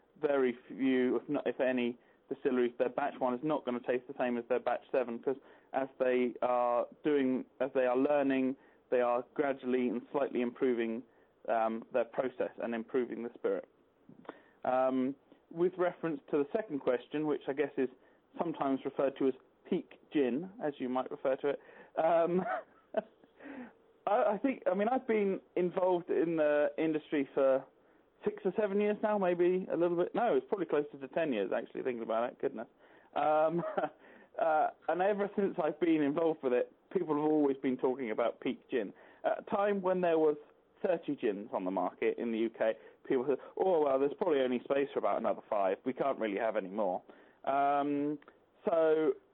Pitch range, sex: 130-180 Hz, male